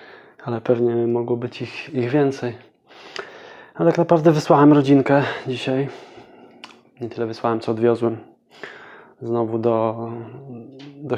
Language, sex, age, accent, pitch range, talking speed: English, male, 20-39, Polish, 120-140 Hz, 115 wpm